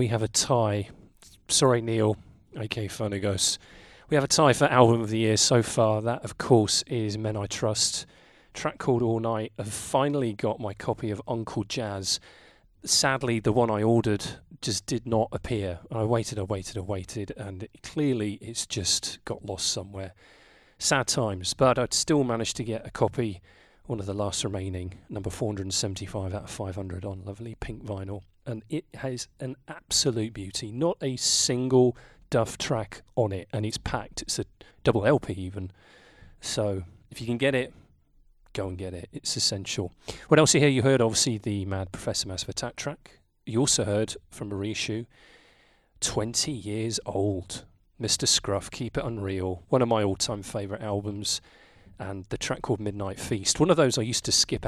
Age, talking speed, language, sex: 30-49, 180 wpm, English, male